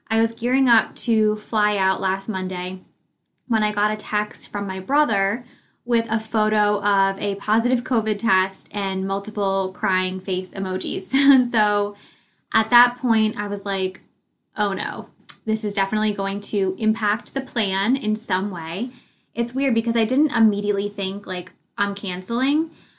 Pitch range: 195-225 Hz